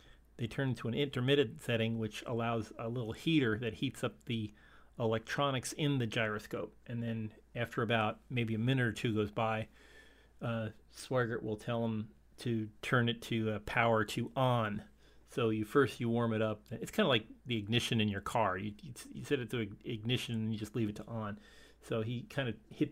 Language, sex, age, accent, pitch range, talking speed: English, male, 40-59, American, 110-130 Hz, 200 wpm